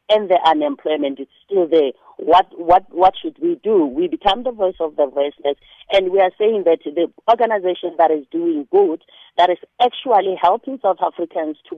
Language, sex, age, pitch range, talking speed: English, female, 40-59, 145-210 Hz, 190 wpm